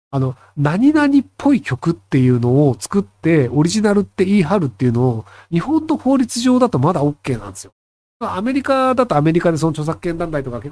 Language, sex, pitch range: Japanese, male, 130-210 Hz